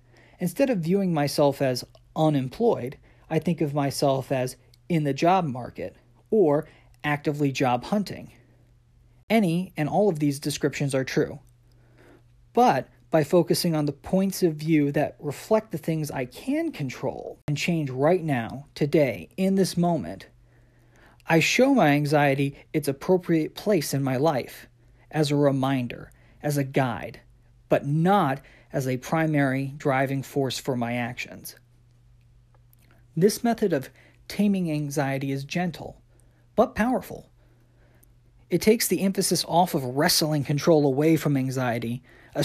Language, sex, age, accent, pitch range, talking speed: English, male, 40-59, American, 125-165 Hz, 135 wpm